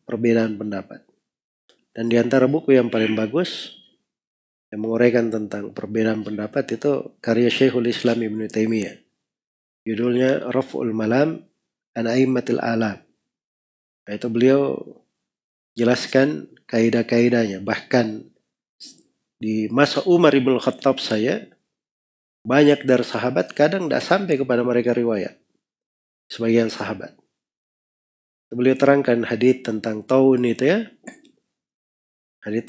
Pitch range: 110-130 Hz